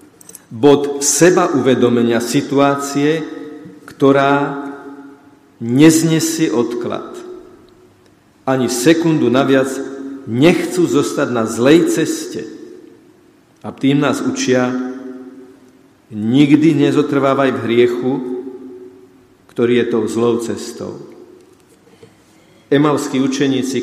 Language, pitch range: Slovak, 125-155 Hz